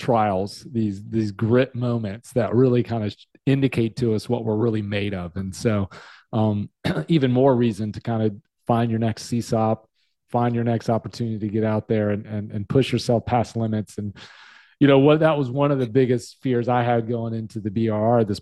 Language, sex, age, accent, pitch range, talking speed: English, male, 30-49, American, 110-125 Hz, 205 wpm